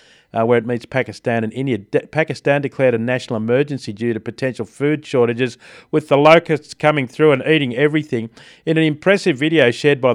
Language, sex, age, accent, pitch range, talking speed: English, male, 40-59, Australian, 120-150 Hz, 185 wpm